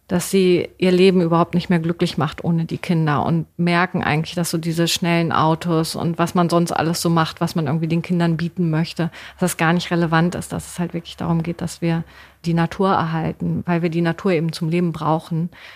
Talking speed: 225 wpm